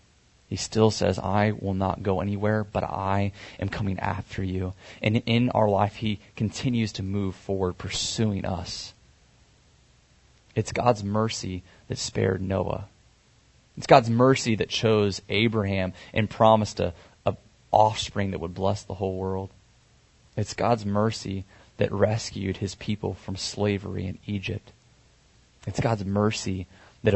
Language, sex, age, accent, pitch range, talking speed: English, male, 20-39, American, 95-115 Hz, 140 wpm